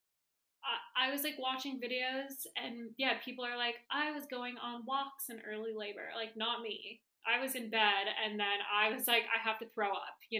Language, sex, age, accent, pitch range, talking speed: English, female, 20-39, American, 205-240 Hz, 210 wpm